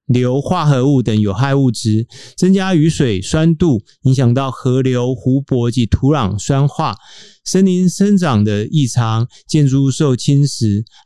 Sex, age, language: male, 30-49, Chinese